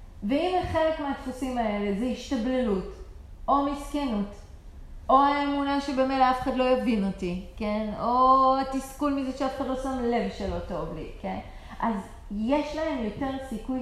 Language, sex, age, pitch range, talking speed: Hebrew, female, 30-49, 210-275 Hz, 150 wpm